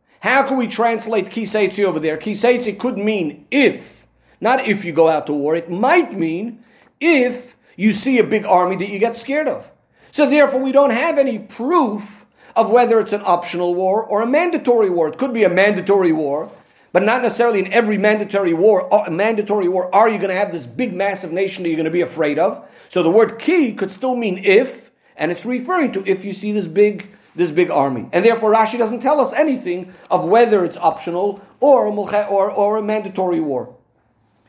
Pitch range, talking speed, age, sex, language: 190-245 Hz, 205 wpm, 50-69, male, English